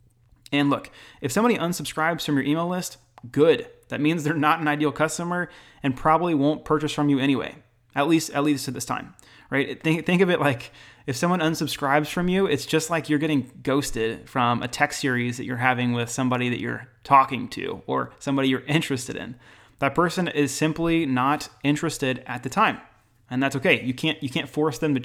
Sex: male